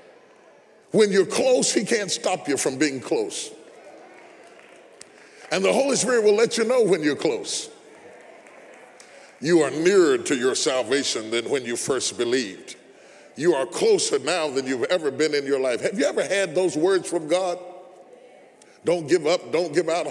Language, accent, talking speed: English, American, 170 wpm